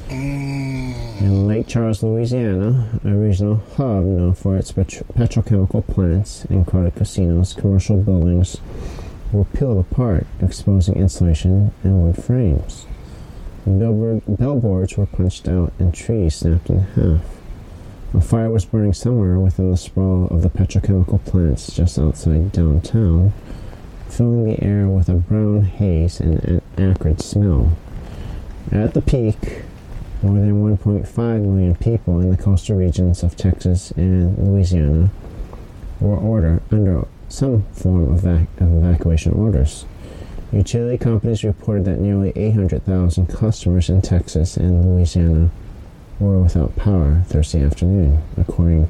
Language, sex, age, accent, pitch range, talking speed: English, male, 30-49, American, 85-105 Hz, 130 wpm